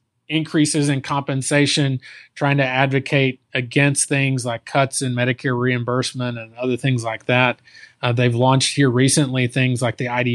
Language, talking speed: English, 155 wpm